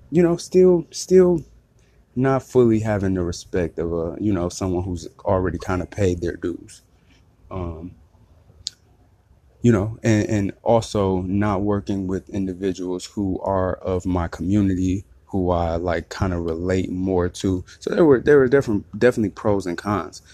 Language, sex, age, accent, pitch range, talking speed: English, male, 20-39, American, 90-105 Hz, 155 wpm